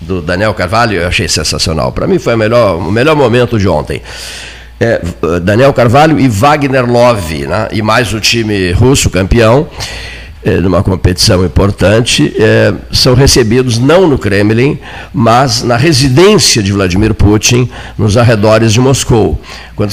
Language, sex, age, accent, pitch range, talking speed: Portuguese, male, 50-69, Brazilian, 95-125 Hz, 145 wpm